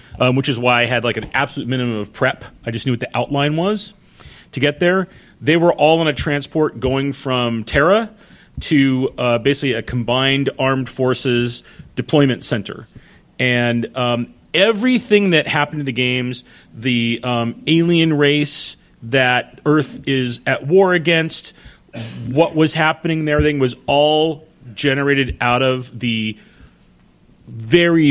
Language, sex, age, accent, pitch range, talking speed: English, male, 40-59, American, 120-145 Hz, 150 wpm